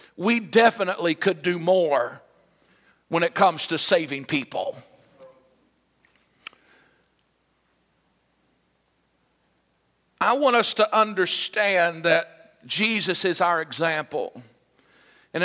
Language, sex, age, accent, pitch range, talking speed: English, male, 50-69, American, 175-230 Hz, 85 wpm